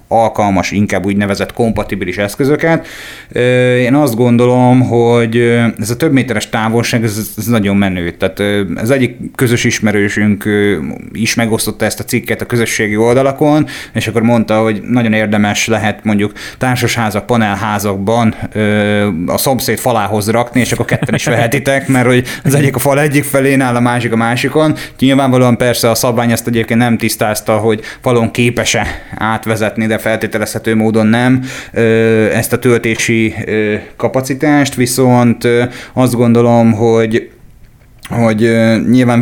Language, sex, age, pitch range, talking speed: Hungarian, male, 30-49, 110-125 Hz, 135 wpm